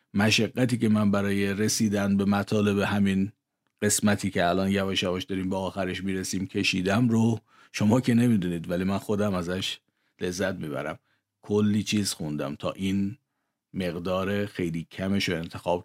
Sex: male